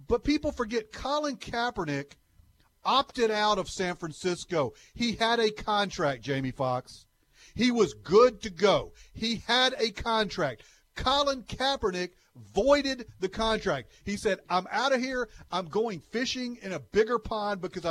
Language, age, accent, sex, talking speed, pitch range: English, 40-59, American, male, 145 wpm, 180-235 Hz